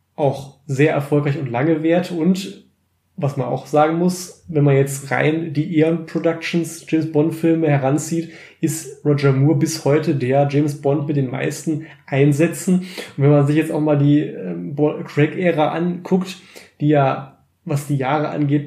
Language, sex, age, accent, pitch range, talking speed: German, male, 20-39, German, 140-165 Hz, 165 wpm